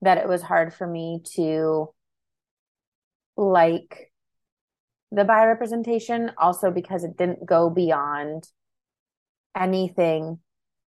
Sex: female